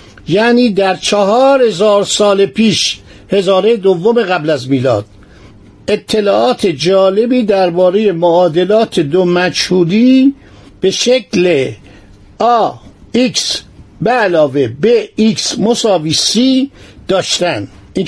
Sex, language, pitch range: male, Persian, 155-200 Hz